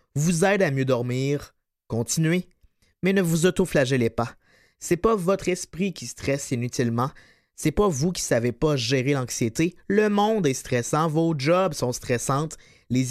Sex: male